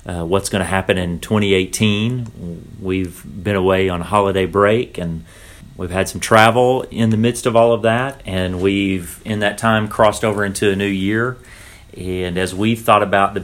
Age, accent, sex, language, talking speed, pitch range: 40-59, American, male, English, 190 wpm, 90-100 Hz